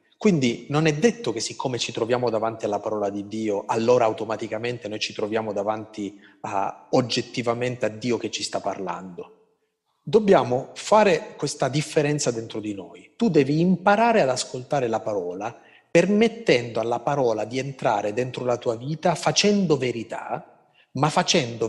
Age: 30-49